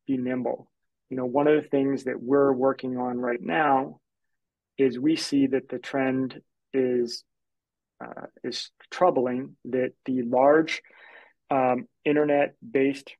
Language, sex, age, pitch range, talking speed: English, male, 30-49, 125-135 Hz, 130 wpm